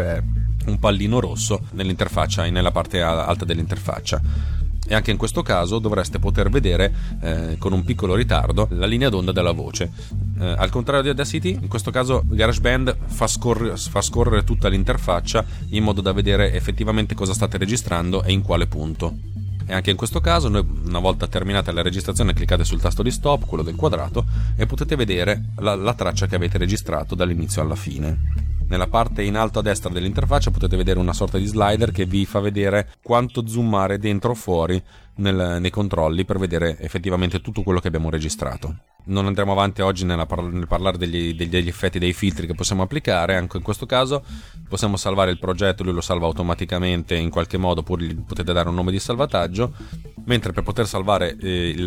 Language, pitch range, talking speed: Italian, 90-105 Hz, 185 wpm